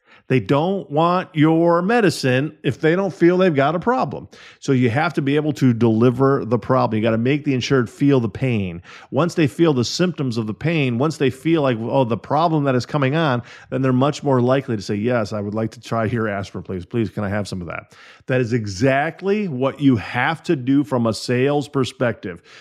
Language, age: English, 40-59